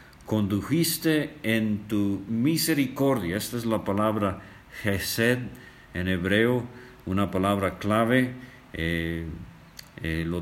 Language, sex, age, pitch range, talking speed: English, male, 50-69, 90-115 Hz, 100 wpm